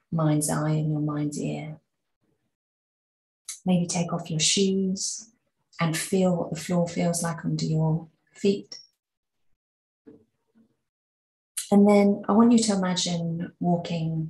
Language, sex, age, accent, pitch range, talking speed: English, female, 30-49, British, 160-190 Hz, 120 wpm